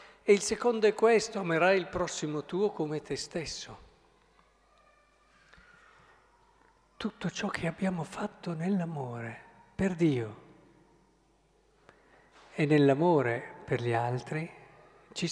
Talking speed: 100 wpm